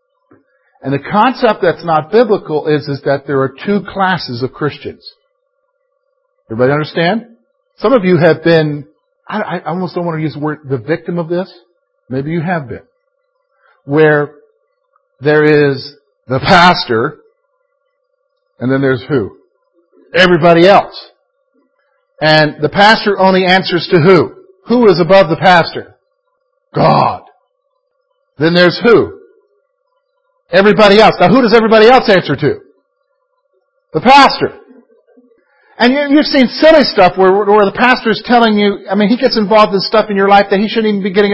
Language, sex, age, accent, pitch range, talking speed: English, male, 50-69, American, 170-275 Hz, 150 wpm